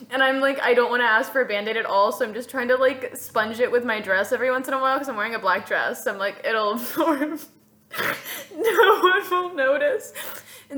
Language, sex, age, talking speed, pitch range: English, female, 20-39, 245 wpm, 200-265 Hz